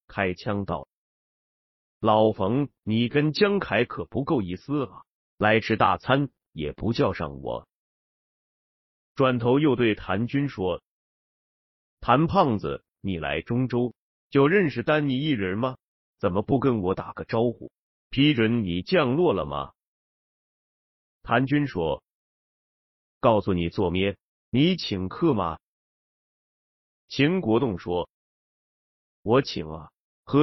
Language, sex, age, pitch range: Chinese, male, 30-49, 95-140 Hz